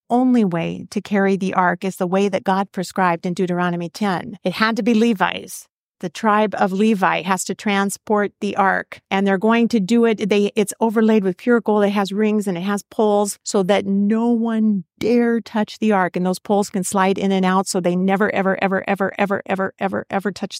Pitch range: 200-275 Hz